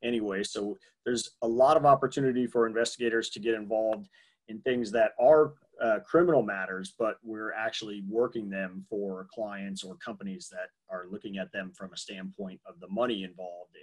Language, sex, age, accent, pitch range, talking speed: English, male, 30-49, American, 110-130 Hz, 175 wpm